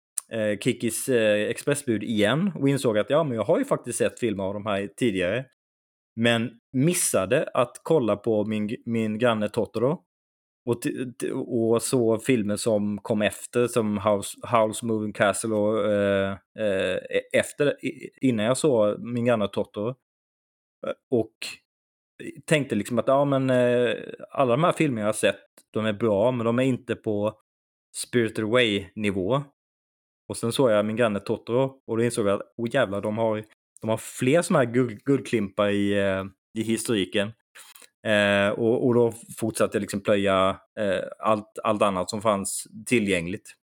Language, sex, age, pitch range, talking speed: Swedish, male, 30-49, 105-120 Hz, 155 wpm